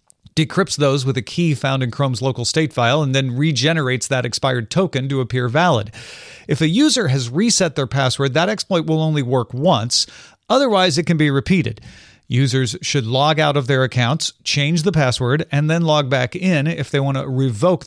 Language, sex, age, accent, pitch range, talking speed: English, male, 40-59, American, 125-165 Hz, 195 wpm